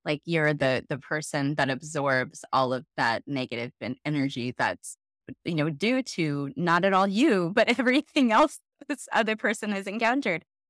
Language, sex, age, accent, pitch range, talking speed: English, female, 20-39, American, 140-185 Hz, 165 wpm